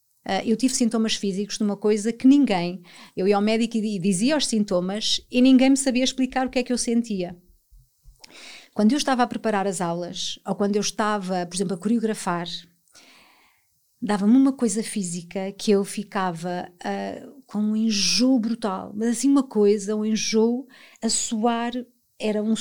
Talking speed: 175 wpm